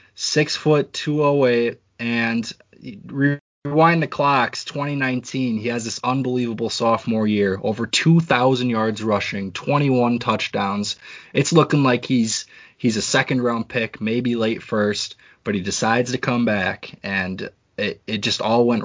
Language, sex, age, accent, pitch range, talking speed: English, male, 20-39, American, 110-130 Hz, 140 wpm